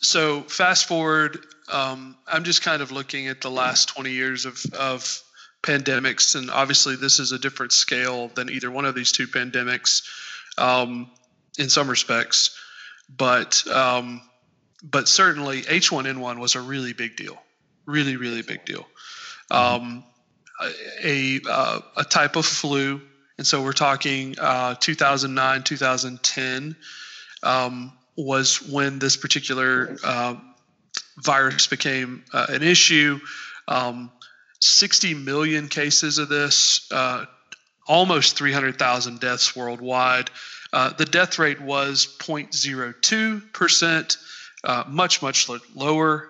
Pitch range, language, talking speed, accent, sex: 125-155 Hz, English, 125 wpm, American, male